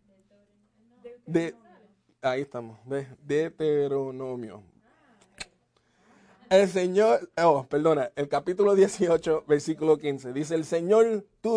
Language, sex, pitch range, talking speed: English, male, 145-195 Hz, 95 wpm